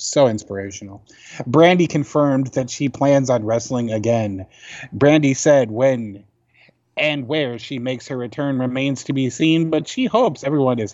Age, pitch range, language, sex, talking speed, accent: 20-39, 115-145 Hz, English, male, 155 wpm, American